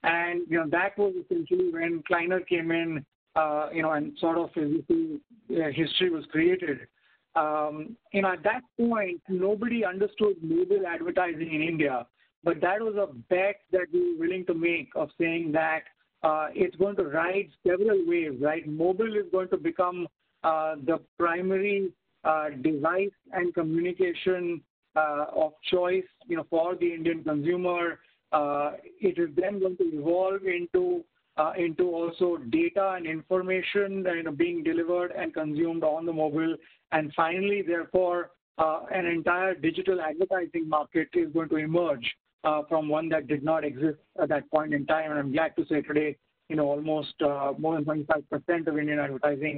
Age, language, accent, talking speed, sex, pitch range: 50-69, English, Indian, 170 wpm, male, 155-190 Hz